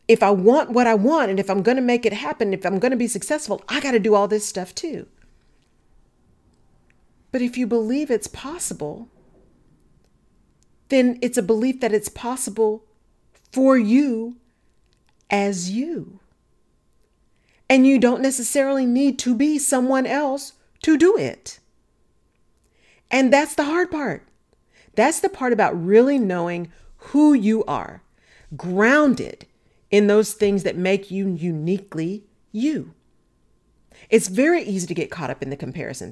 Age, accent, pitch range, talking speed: 40-59, American, 200-265 Hz, 150 wpm